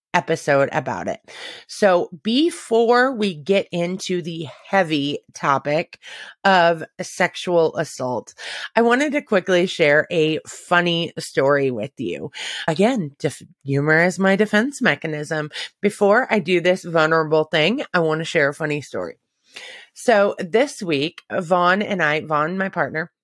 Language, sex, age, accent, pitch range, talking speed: English, female, 30-49, American, 160-215 Hz, 135 wpm